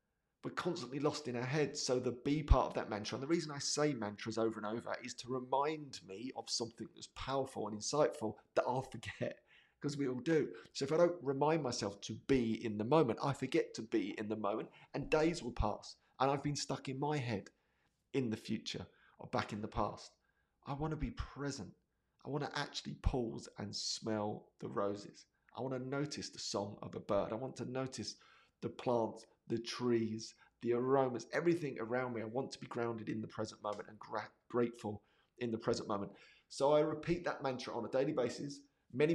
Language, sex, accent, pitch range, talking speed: English, male, British, 110-145 Hz, 210 wpm